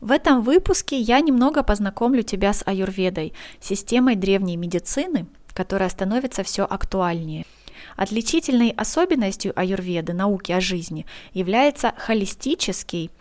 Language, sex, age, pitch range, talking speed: Russian, female, 20-39, 185-250 Hz, 110 wpm